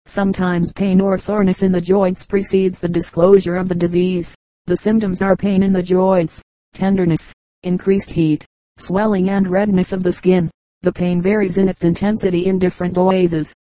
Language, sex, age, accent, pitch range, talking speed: English, female, 40-59, American, 180-195 Hz, 165 wpm